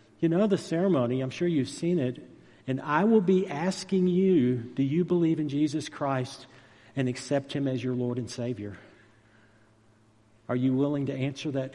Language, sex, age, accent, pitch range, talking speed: English, male, 50-69, American, 110-145 Hz, 180 wpm